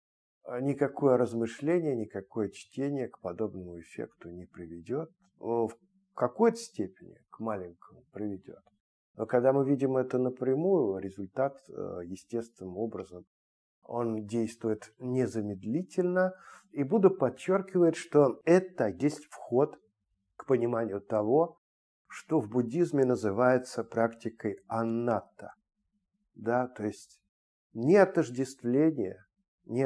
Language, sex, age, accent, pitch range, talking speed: Russian, male, 50-69, native, 110-155 Hz, 95 wpm